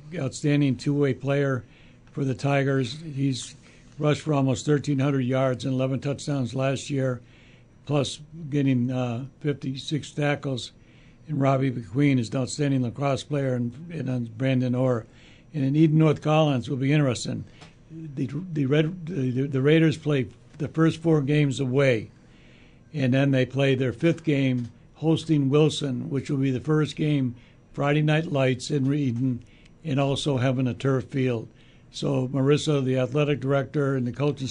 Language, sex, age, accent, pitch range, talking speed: English, male, 60-79, American, 130-150 Hz, 155 wpm